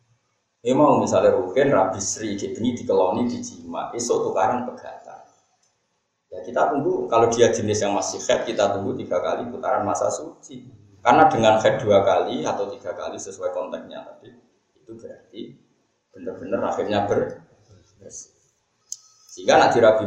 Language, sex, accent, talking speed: Indonesian, male, native, 140 wpm